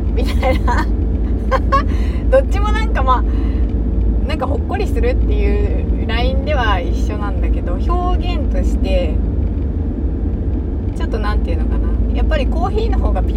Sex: female